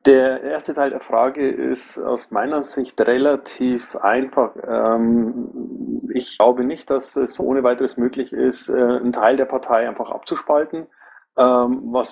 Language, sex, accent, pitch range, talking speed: German, male, German, 115-135 Hz, 135 wpm